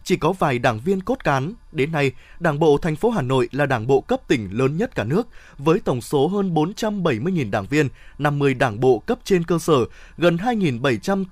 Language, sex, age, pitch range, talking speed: Vietnamese, male, 20-39, 130-185 Hz, 210 wpm